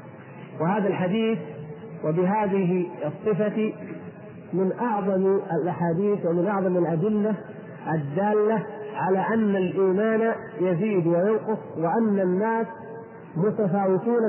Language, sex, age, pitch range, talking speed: Arabic, male, 50-69, 185-220 Hz, 80 wpm